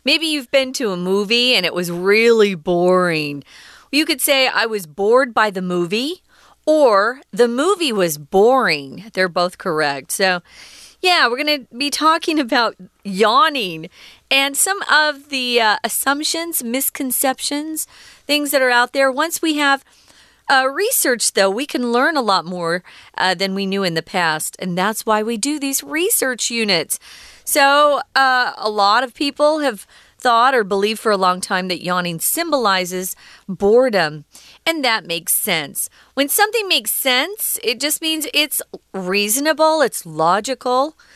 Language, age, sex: Chinese, 40-59, female